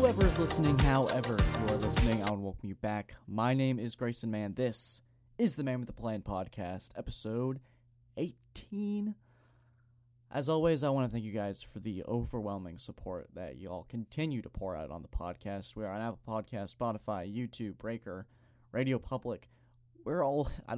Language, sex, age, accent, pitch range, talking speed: English, male, 20-39, American, 105-125 Hz, 180 wpm